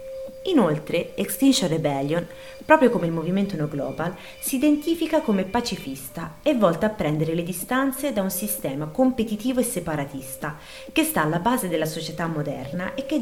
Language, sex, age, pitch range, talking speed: Italian, female, 30-49, 170-265 Hz, 155 wpm